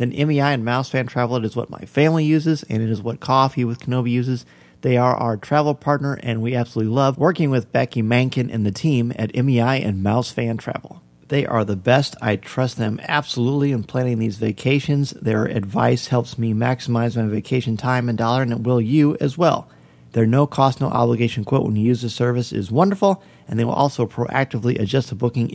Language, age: English, 40-59